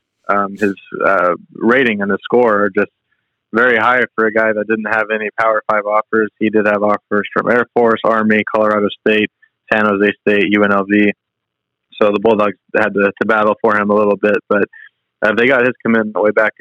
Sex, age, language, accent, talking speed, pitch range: male, 20-39, English, American, 200 wpm, 105-110 Hz